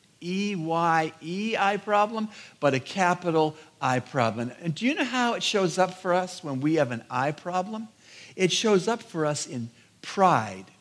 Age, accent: 60-79, American